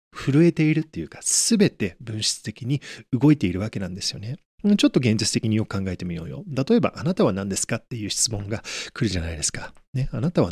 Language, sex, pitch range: Japanese, male, 100-170 Hz